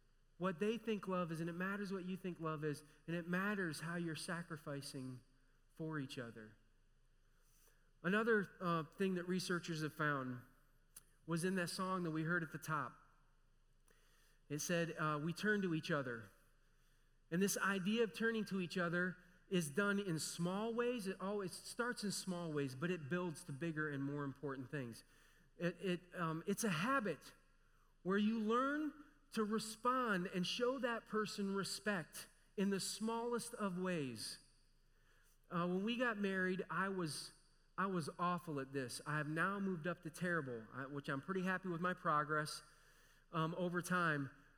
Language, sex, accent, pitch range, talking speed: English, male, American, 155-220 Hz, 170 wpm